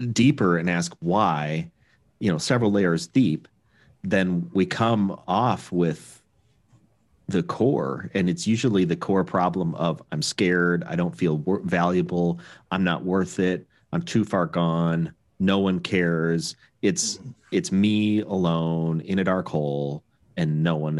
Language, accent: English, American